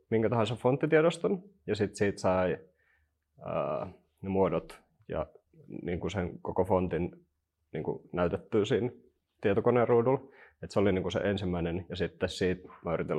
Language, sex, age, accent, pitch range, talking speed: Finnish, male, 30-49, native, 85-105 Hz, 130 wpm